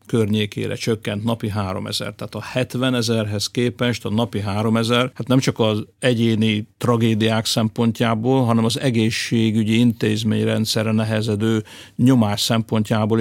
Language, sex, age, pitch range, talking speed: Hungarian, male, 50-69, 105-120 Hz, 120 wpm